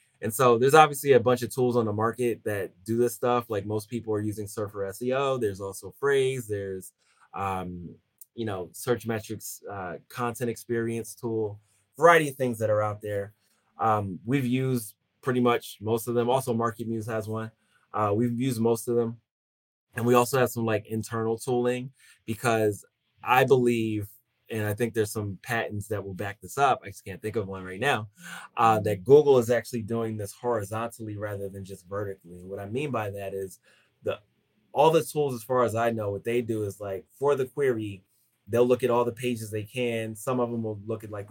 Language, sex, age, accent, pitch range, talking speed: English, male, 20-39, American, 105-120 Hz, 205 wpm